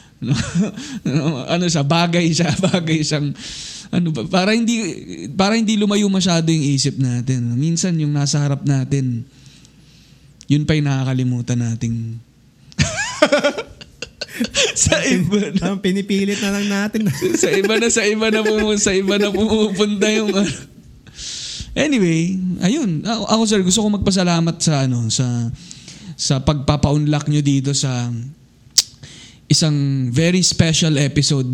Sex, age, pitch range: male, 20-39, 130-185 Hz